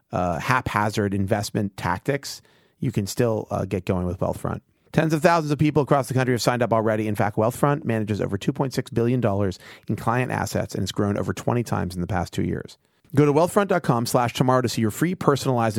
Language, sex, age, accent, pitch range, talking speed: English, male, 30-49, American, 105-140 Hz, 210 wpm